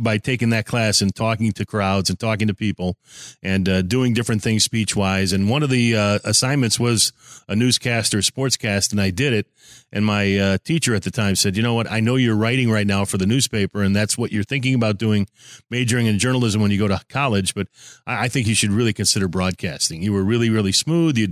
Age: 40-59